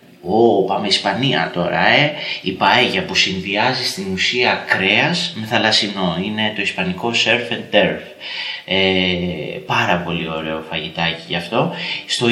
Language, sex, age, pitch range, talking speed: Greek, male, 30-49, 100-135 Hz, 140 wpm